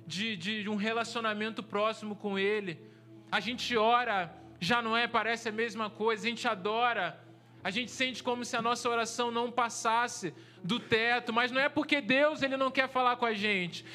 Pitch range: 195-245 Hz